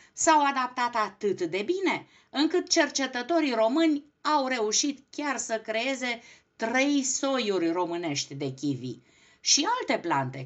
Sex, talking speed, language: female, 120 wpm, Romanian